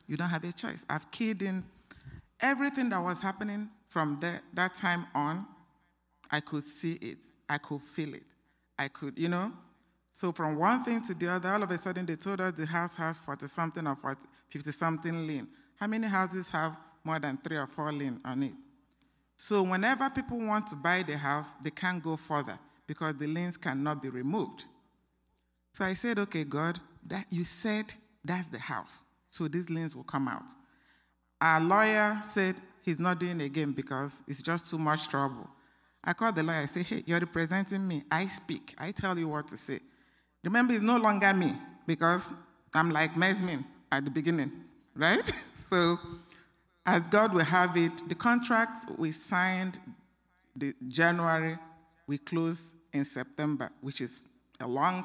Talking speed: 175 wpm